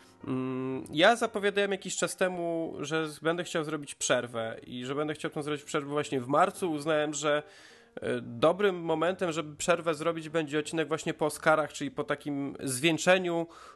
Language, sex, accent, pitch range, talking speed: Polish, male, native, 140-170 Hz, 155 wpm